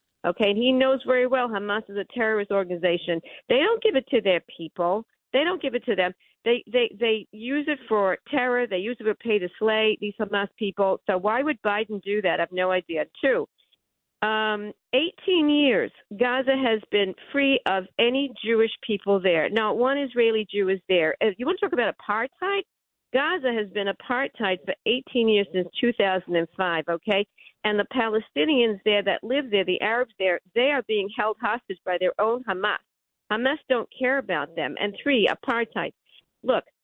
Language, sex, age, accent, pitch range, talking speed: English, female, 50-69, American, 195-255 Hz, 185 wpm